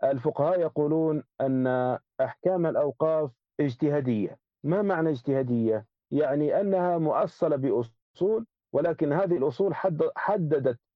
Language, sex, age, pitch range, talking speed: Arabic, male, 50-69, 140-190 Hz, 95 wpm